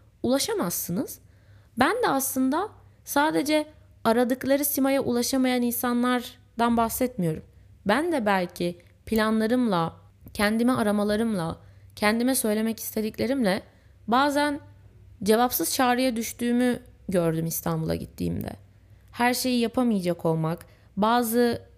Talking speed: 85 wpm